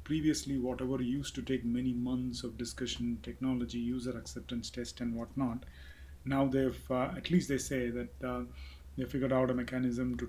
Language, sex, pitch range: English, male, 120-130 Hz